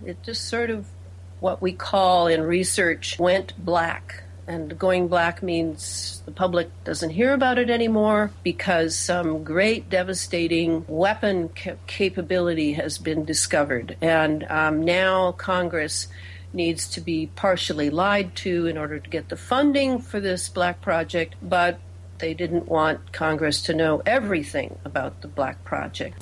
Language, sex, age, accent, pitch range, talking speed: English, female, 60-79, American, 150-195 Hz, 145 wpm